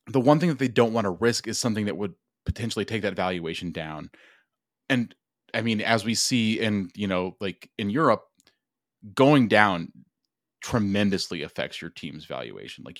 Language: English